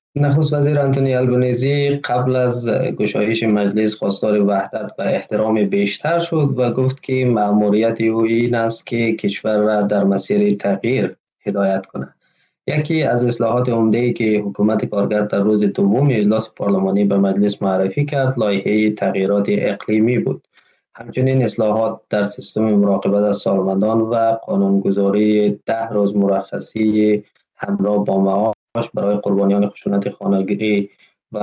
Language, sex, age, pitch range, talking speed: Persian, male, 20-39, 100-125 Hz, 130 wpm